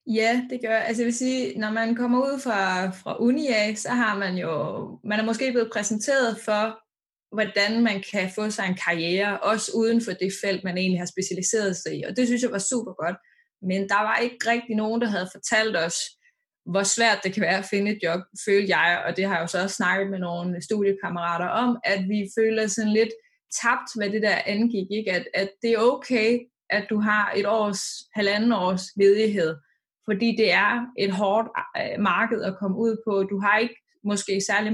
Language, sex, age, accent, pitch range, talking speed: Danish, female, 20-39, native, 195-235 Hz, 210 wpm